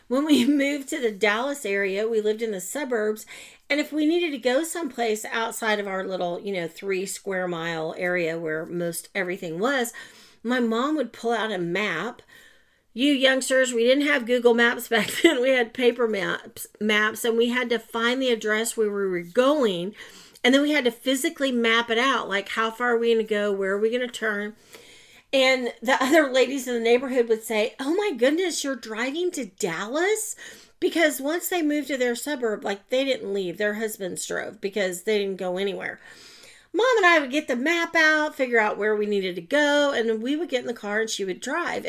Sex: female